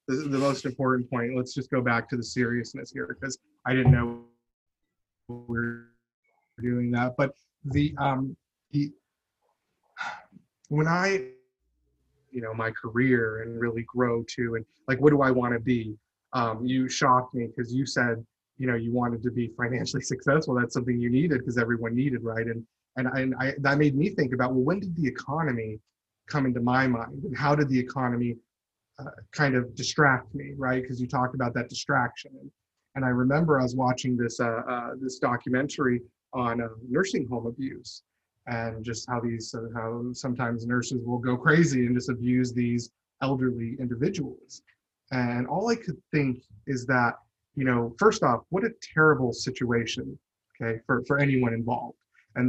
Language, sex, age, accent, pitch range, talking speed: English, male, 30-49, American, 120-135 Hz, 180 wpm